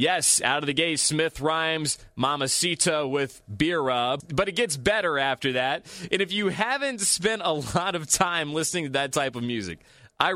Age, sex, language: 30-49, male, English